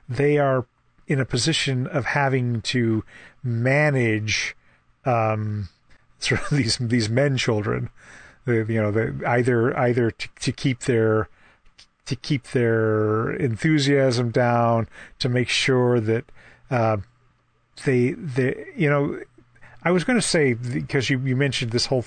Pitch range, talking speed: 115-135 Hz, 135 wpm